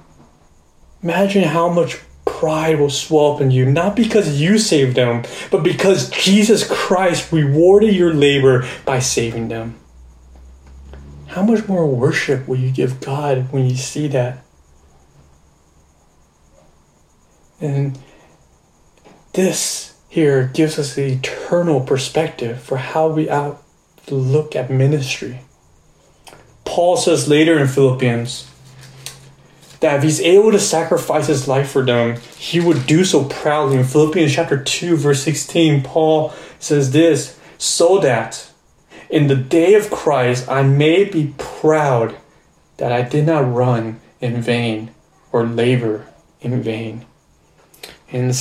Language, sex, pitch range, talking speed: English, male, 125-155 Hz, 130 wpm